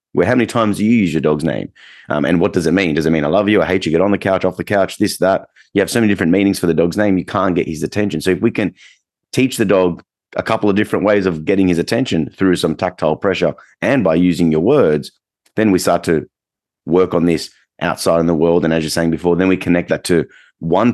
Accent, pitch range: Australian, 85-100 Hz